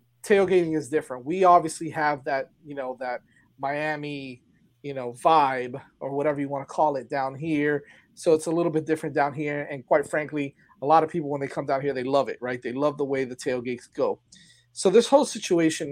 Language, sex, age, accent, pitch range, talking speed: English, male, 30-49, American, 130-165 Hz, 220 wpm